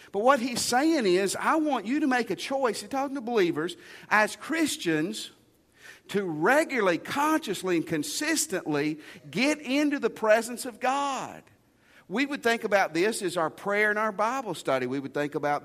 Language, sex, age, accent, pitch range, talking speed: English, male, 50-69, American, 155-250 Hz, 175 wpm